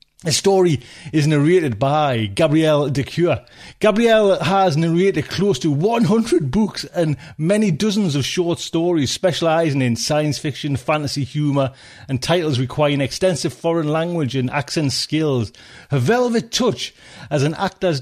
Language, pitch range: English, 140-185 Hz